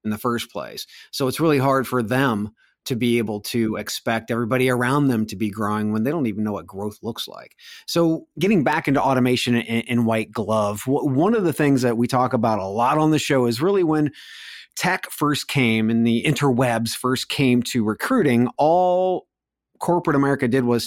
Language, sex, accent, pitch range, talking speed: English, male, American, 115-140 Hz, 200 wpm